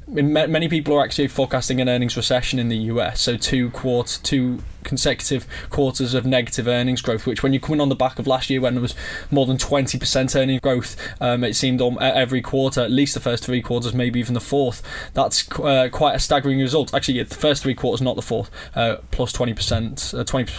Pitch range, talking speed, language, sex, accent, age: 120-135 Hz, 220 wpm, English, male, British, 20-39